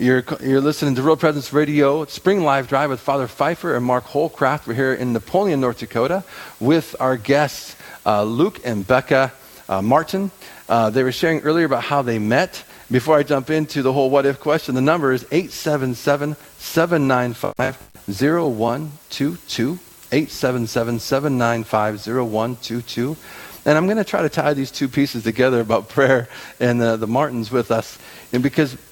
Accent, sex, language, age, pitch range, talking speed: American, male, English, 50-69, 110-145 Hz, 155 wpm